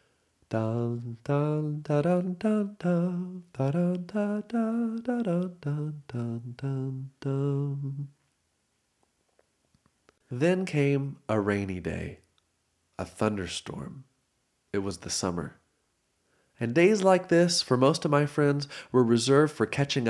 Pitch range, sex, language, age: 105-145 Hz, male, English, 30-49